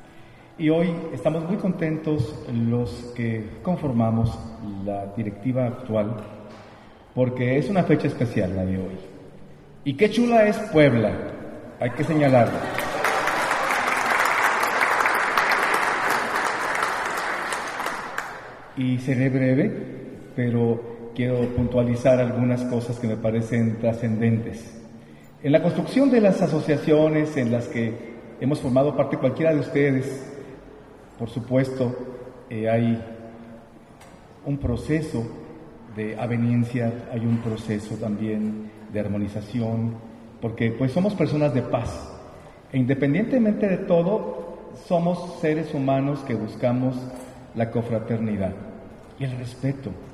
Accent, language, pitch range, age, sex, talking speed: Mexican, Spanish, 115-155 Hz, 40-59, male, 105 wpm